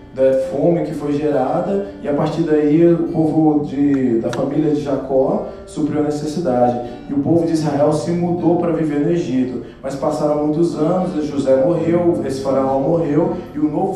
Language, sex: Portuguese, male